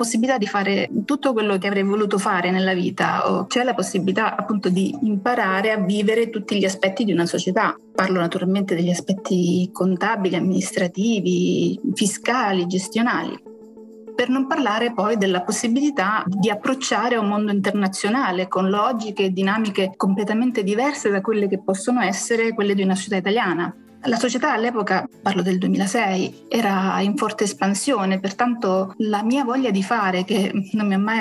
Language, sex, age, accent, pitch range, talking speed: Italian, female, 30-49, native, 190-235 Hz, 160 wpm